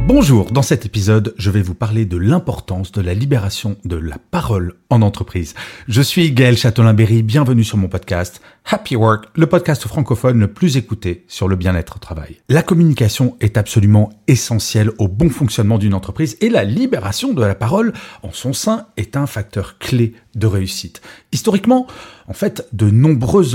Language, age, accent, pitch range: French, 40-59, French, 100-135 Hz